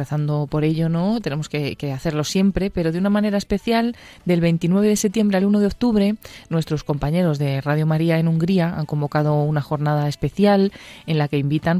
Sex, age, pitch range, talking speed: female, 20-39, 145-175 Hz, 195 wpm